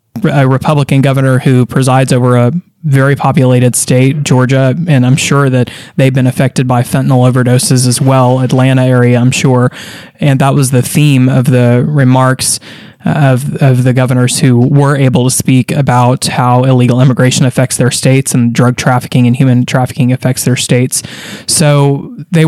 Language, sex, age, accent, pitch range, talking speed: English, male, 20-39, American, 125-145 Hz, 165 wpm